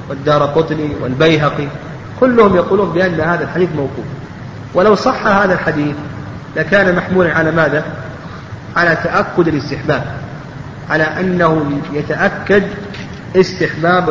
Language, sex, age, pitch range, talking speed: Arabic, male, 40-59, 140-175 Hz, 100 wpm